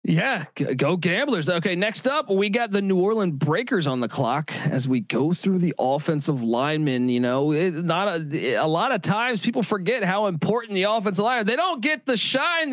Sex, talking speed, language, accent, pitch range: male, 200 wpm, English, American, 135-185 Hz